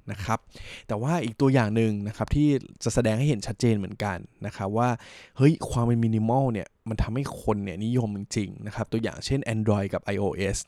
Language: Thai